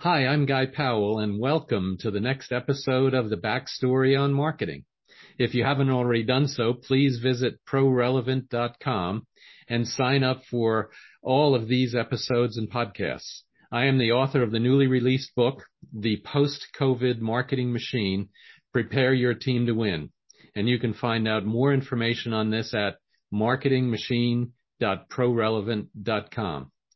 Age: 50-69